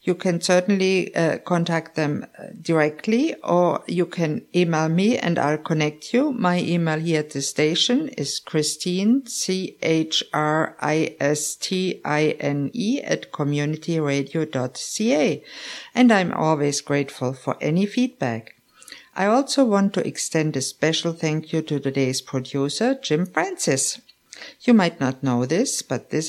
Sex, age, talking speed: female, 50-69, 125 wpm